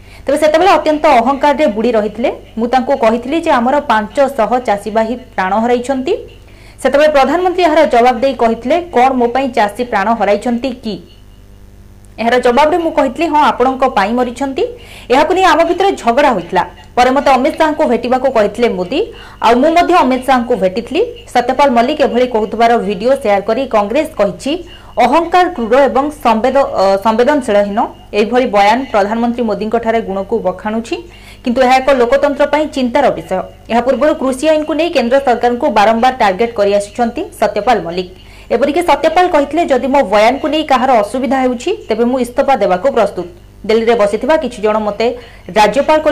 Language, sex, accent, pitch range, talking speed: Hindi, female, native, 225-295 Hz, 90 wpm